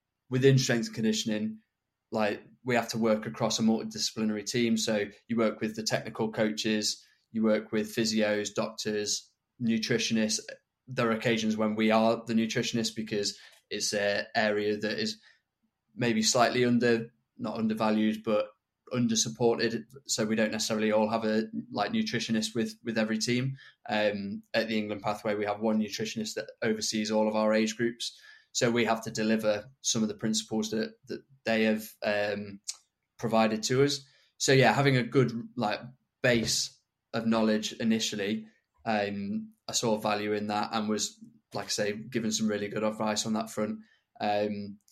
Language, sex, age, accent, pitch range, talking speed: English, male, 20-39, British, 110-120 Hz, 165 wpm